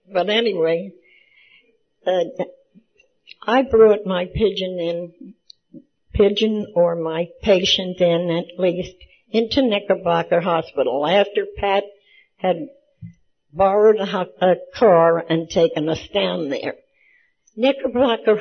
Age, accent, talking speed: 60-79, American, 105 wpm